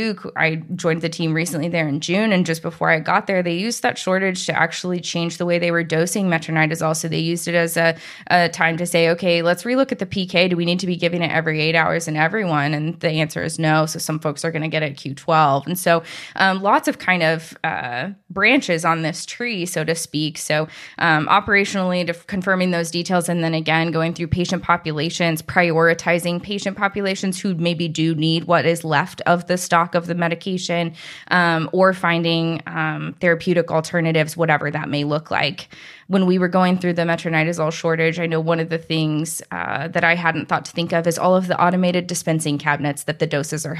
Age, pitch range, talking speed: 20-39, 160-180 Hz, 215 wpm